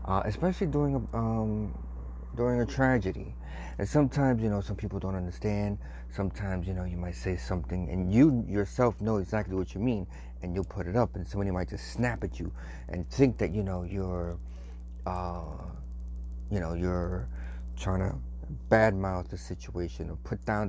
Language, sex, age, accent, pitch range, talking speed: English, male, 30-49, American, 80-110 Hz, 175 wpm